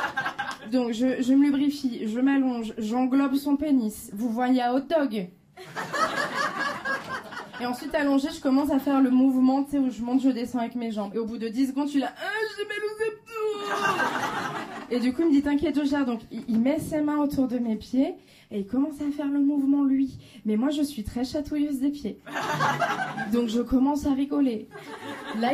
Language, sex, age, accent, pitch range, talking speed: French, female, 20-39, French, 250-300 Hz, 195 wpm